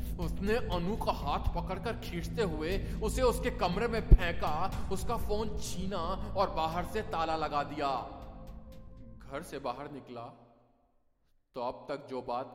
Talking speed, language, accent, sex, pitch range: 145 wpm, Hindi, native, male, 110-150 Hz